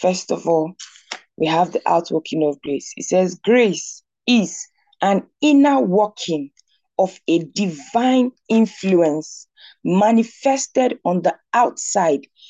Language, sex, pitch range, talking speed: English, female, 175-255 Hz, 115 wpm